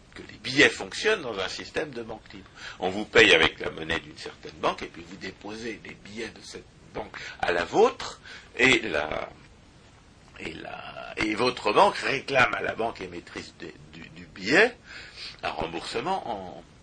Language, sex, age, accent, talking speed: French, male, 60-79, French, 170 wpm